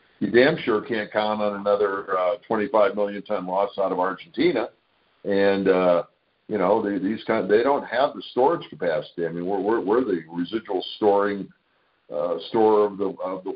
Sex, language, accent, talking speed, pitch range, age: male, English, American, 185 wpm, 95-155 Hz, 50-69